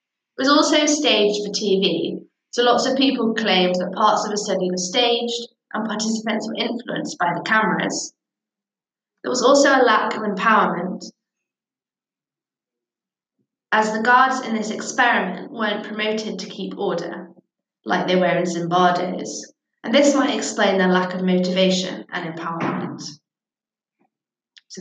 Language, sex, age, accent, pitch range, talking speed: English, female, 20-39, British, 190-255 Hz, 140 wpm